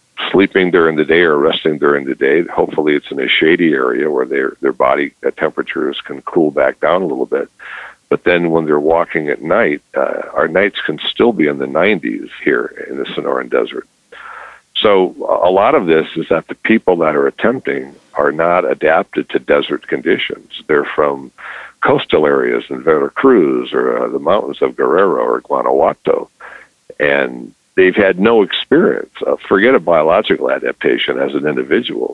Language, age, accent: English, 60-79, American